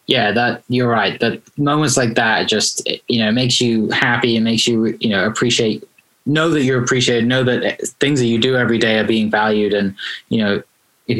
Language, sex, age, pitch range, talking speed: English, male, 10-29, 110-130 Hz, 210 wpm